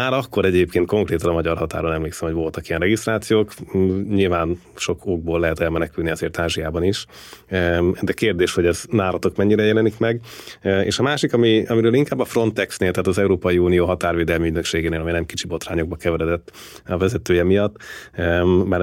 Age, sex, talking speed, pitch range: 30-49, male, 165 wpm, 85-105 Hz